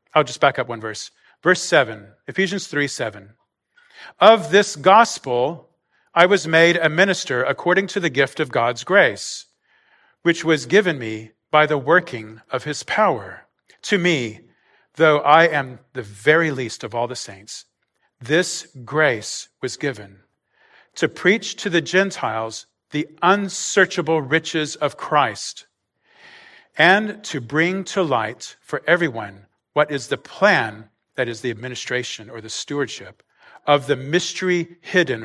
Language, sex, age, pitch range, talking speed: English, male, 40-59, 125-170 Hz, 145 wpm